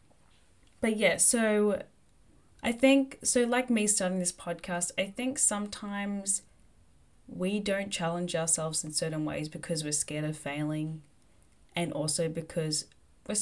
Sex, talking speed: female, 135 wpm